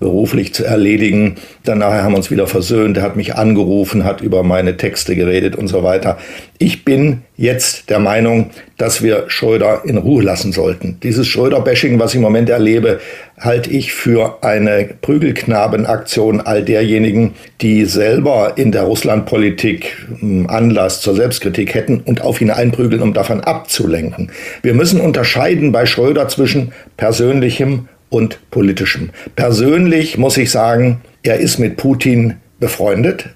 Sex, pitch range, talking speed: male, 100-125 Hz, 145 wpm